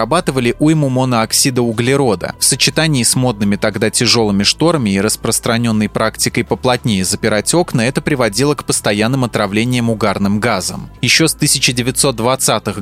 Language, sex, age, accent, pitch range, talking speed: Russian, male, 20-39, native, 110-140 Hz, 120 wpm